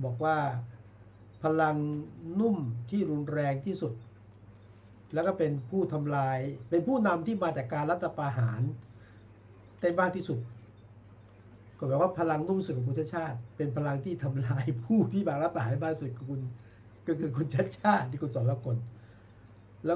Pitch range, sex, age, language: 120-155 Hz, male, 60-79, Thai